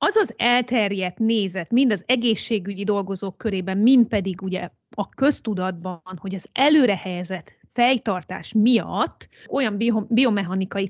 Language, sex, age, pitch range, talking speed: Hungarian, female, 30-49, 190-250 Hz, 120 wpm